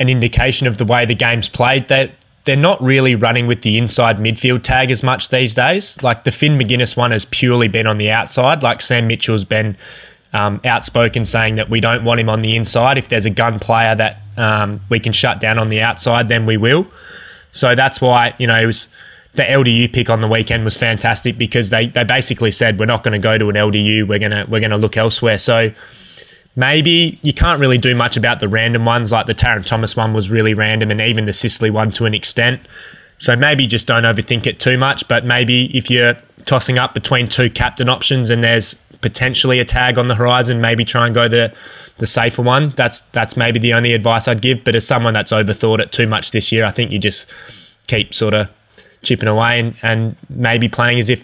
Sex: male